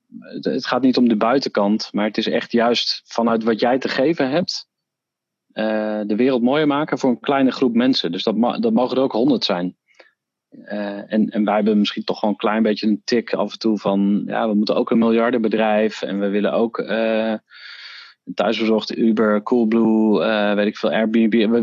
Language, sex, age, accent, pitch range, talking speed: Dutch, male, 40-59, Dutch, 105-130 Hz, 200 wpm